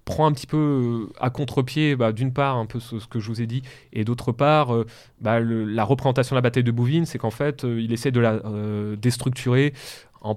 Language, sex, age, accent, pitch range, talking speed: French, male, 20-39, French, 110-135 Hz, 235 wpm